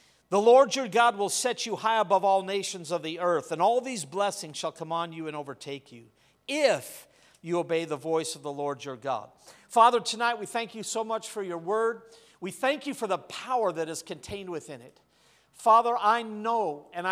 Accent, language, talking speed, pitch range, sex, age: American, English, 210 wpm, 170-240 Hz, male, 50-69